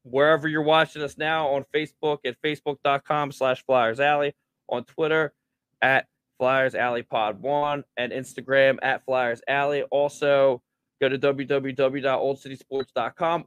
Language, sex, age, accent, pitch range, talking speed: English, male, 20-39, American, 125-140 Hz, 125 wpm